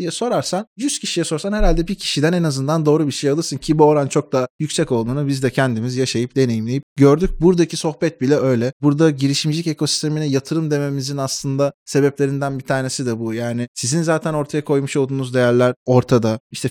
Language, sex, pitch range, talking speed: Turkish, male, 130-160 Hz, 180 wpm